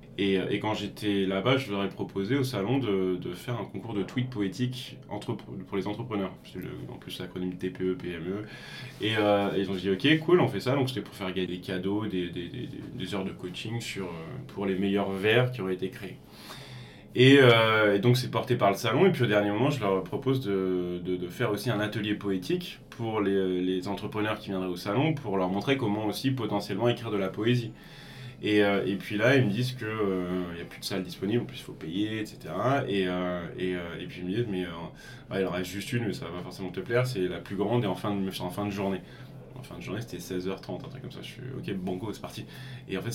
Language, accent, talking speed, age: French, French, 255 wpm, 20-39